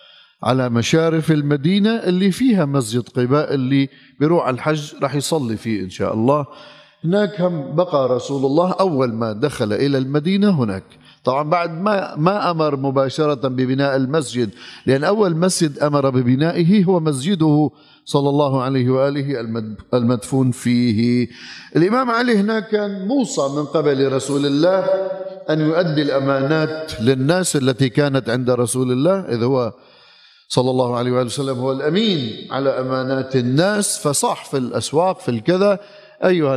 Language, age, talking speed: Arabic, 50-69, 135 wpm